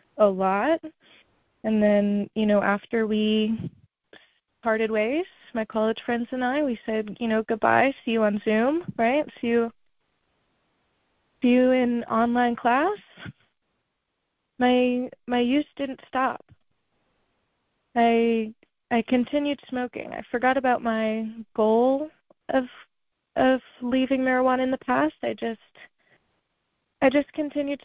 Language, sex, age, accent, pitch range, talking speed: English, female, 20-39, American, 215-255 Hz, 125 wpm